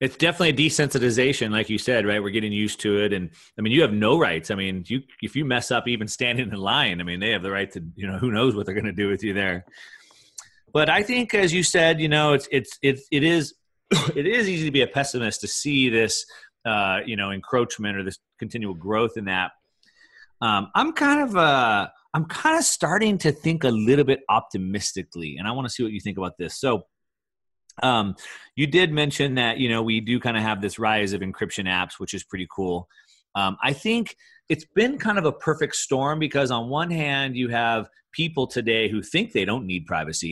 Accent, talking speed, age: American, 220 wpm, 30-49